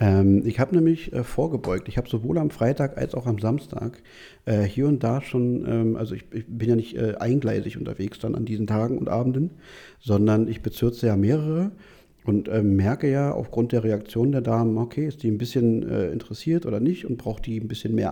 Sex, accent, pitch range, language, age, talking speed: male, German, 110-135 Hz, German, 50-69, 195 wpm